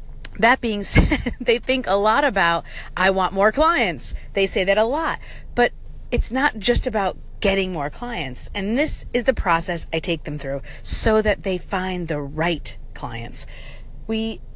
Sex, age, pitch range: female, 30-49, 170-240 Hz